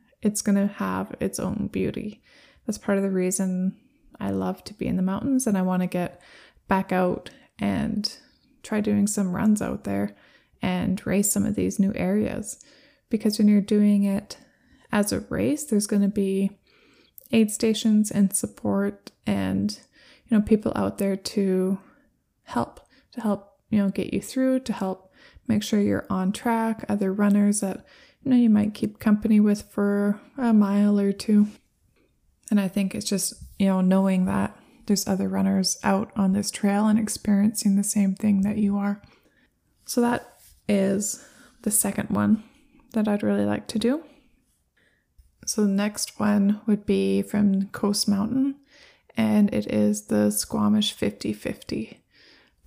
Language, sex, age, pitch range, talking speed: English, female, 20-39, 195-225 Hz, 165 wpm